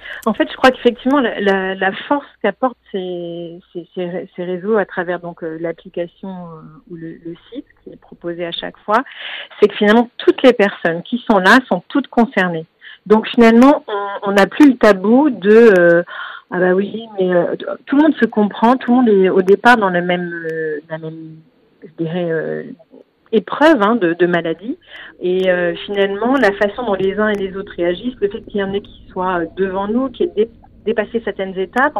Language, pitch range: French, 180-225 Hz